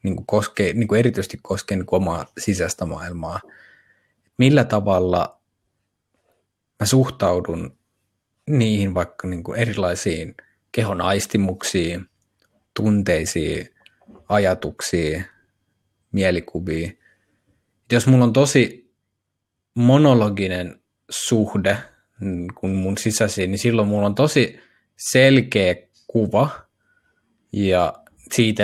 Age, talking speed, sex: 20-39, 85 wpm, male